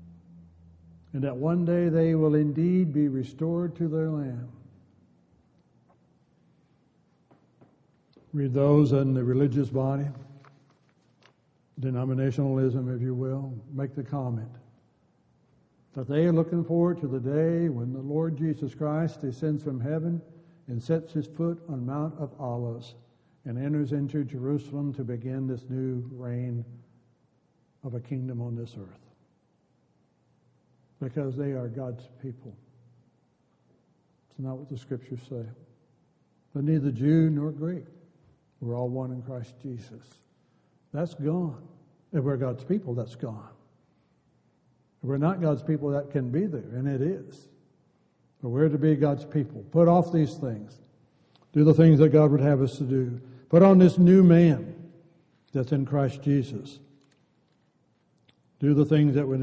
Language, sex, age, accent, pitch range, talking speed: English, male, 60-79, American, 125-155 Hz, 140 wpm